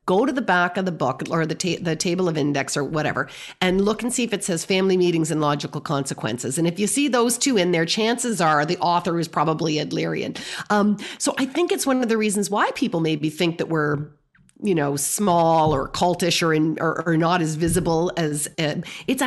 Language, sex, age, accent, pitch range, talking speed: English, female, 40-59, American, 170-225 Hz, 230 wpm